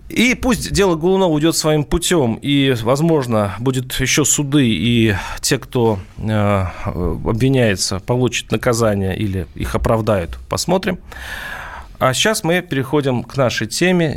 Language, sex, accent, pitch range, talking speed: Russian, male, native, 115-155 Hz, 125 wpm